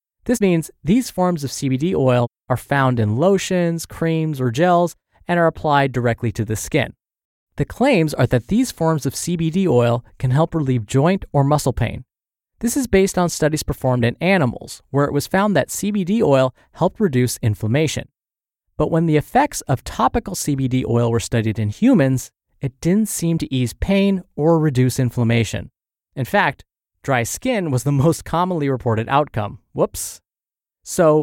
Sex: male